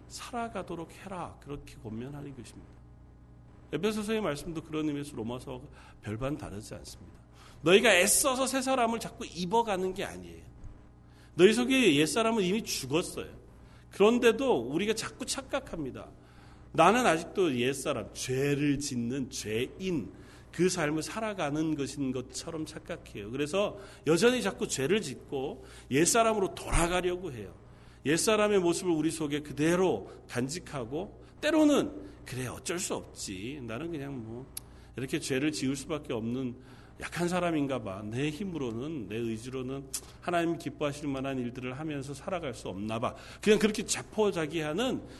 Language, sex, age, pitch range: Korean, male, 40-59, 130-200 Hz